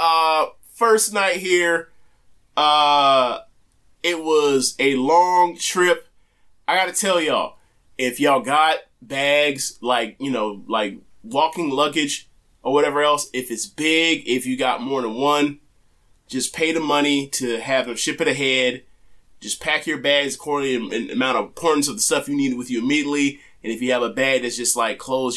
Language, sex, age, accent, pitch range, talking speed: English, male, 20-39, American, 130-160 Hz, 175 wpm